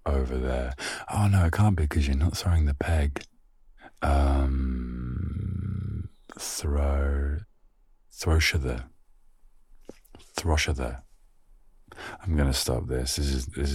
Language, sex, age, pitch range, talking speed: English, male, 30-49, 65-85 Hz, 120 wpm